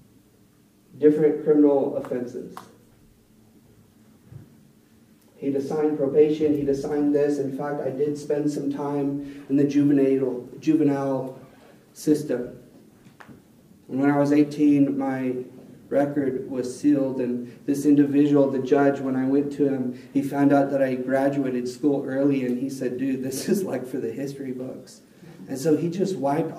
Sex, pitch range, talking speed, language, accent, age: male, 130-145 Hz, 140 wpm, English, American, 40-59